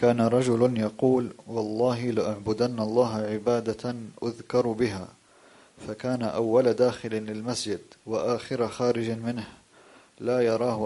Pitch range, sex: 110-125 Hz, male